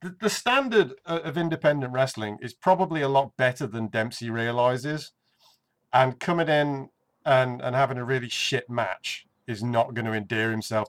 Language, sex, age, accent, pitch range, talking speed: English, male, 30-49, British, 110-150 Hz, 160 wpm